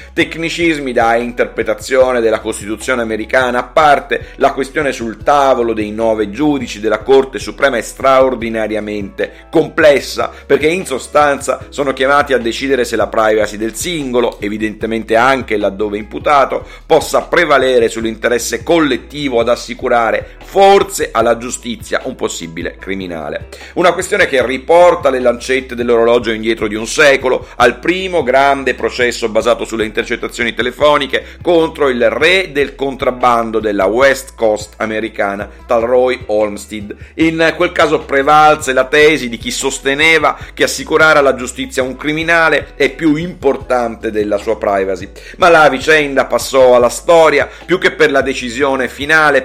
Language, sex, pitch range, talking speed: Italian, male, 115-140 Hz, 135 wpm